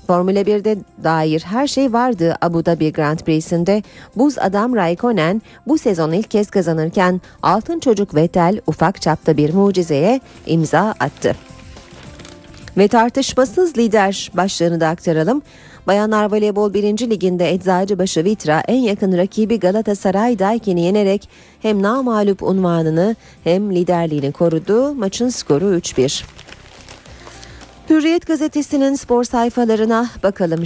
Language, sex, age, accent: Turkish, female, 40-59, native